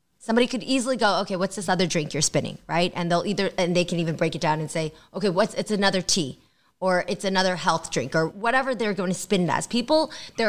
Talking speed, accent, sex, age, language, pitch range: 245 wpm, American, female, 20-39, English, 165-215 Hz